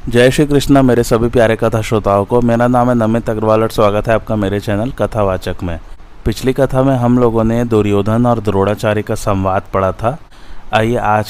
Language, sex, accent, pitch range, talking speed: Hindi, male, native, 105-120 Hz, 195 wpm